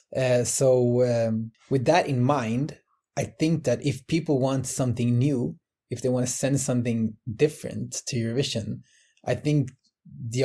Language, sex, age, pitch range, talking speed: English, male, 20-39, 115-135 Hz, 160 wpm